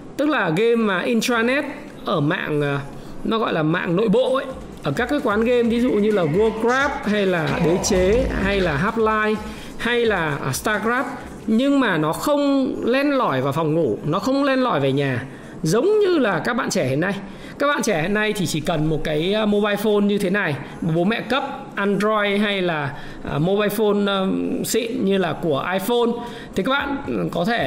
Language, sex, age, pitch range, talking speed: Vietnamese, male, 20-39, 175-240 Hz, 195 wpm